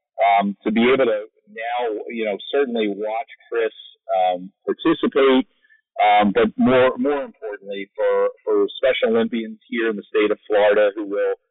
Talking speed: 155 wpm